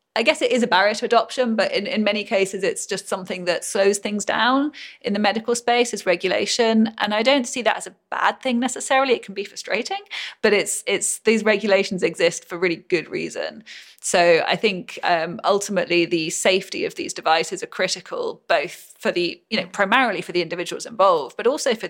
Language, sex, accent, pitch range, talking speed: English, female, British, 190-240 Hz, 205 wpm